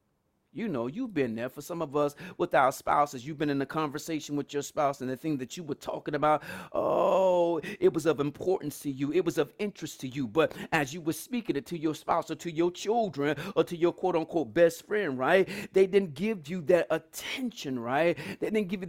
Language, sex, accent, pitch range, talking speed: English, male, American, 145-195 Hz, 230 wpm